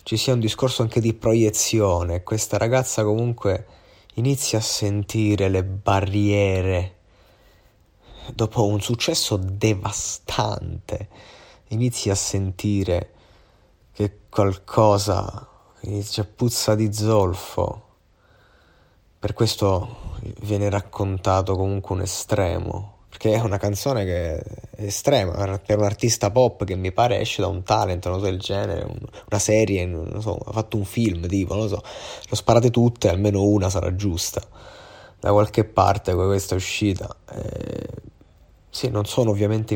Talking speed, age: 135 wpm, 20-39